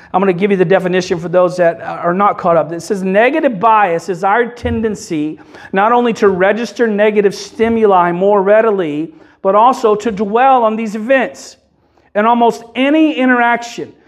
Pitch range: 185-230 Hz